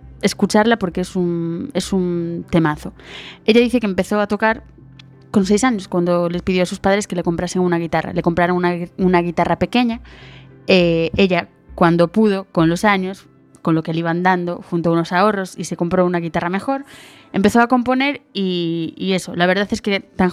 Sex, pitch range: female, 180-230 Hz